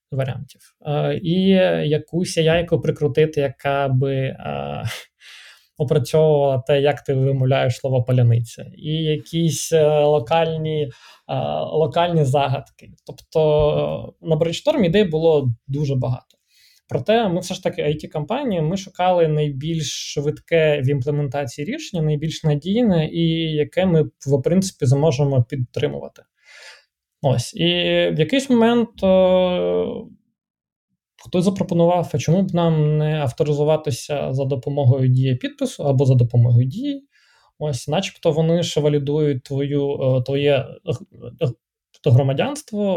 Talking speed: 115 wpm